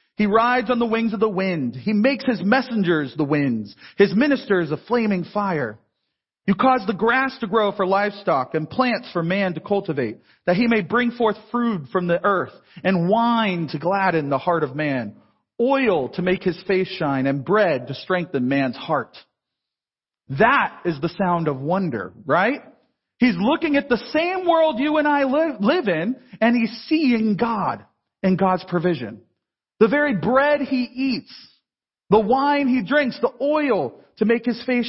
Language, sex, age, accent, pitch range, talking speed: English, male, 40-59, American, 185-255 Hz, 175 wpm